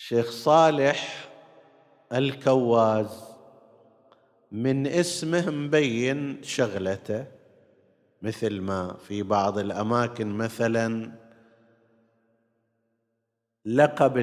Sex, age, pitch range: male, 50-69, 115-145 Hz